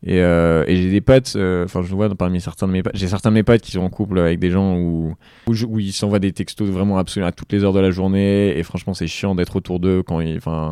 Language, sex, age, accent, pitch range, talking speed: French, male, 20-39, French, 85-100 Hz, 295 wpm